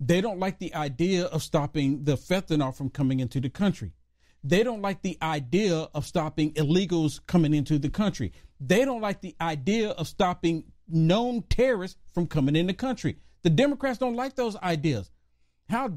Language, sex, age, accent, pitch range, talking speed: English, male, 50-69, American, 150-235 Hz, 175 wpm